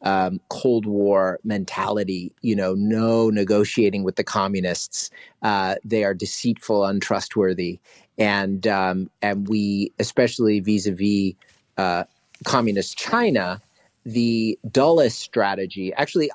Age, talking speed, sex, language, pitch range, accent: 40-59, 105 wpm, male, English, 100-125 Hz, American